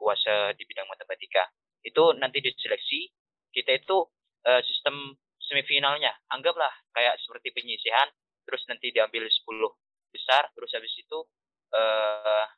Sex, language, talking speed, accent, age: male, Indonesian, 120 wpm, native, 20-39